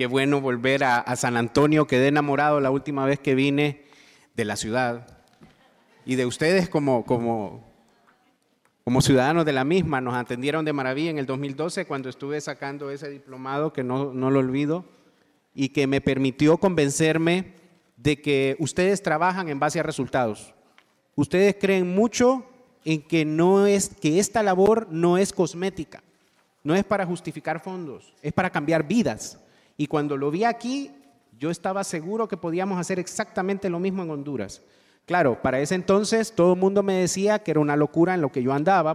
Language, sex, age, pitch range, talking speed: English, male, 40-59, 135-185 Hz, 175 wpm